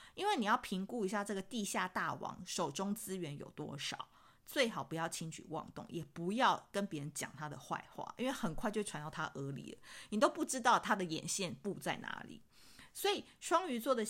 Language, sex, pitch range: Chinese, female, 165-220 Hz